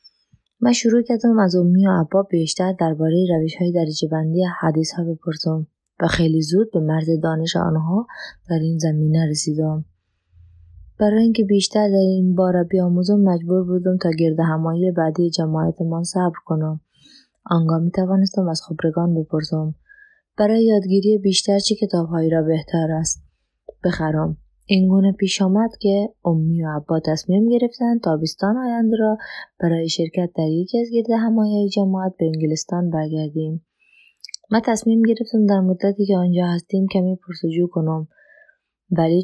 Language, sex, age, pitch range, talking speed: Persian, female, 20-39, 160-200 Hz, 140 wpm